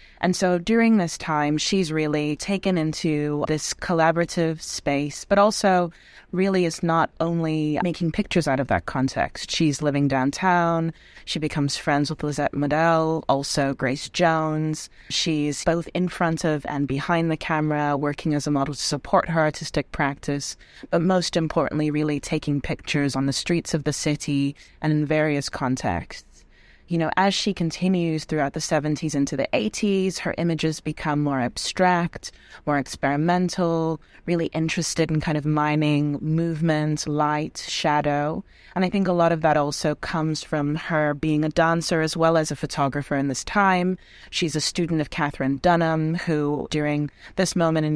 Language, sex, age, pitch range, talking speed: English, female, 20-39, 145-165 Hz, 165 wpm